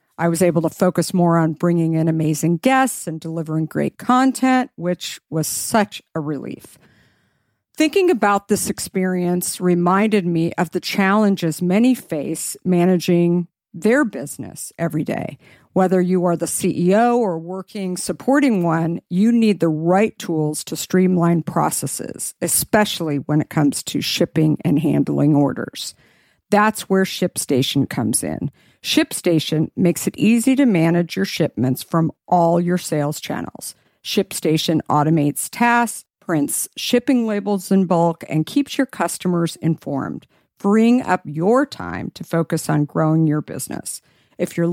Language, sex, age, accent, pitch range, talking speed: English, female, 50-69, American, 160-205 Hz, 140 wpm